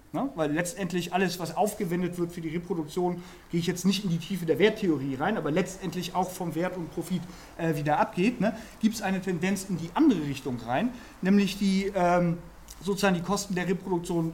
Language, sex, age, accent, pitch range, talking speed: German, male, 40-59, German, 170-225 Hz, 190 wpm